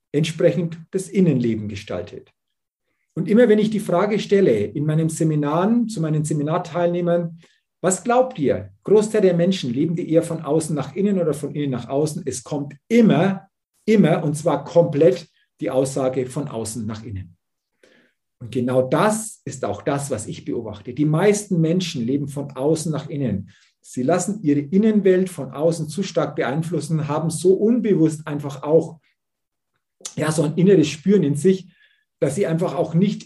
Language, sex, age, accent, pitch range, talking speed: German, male, 50-69, German, 135-175 Hz, 165 wpm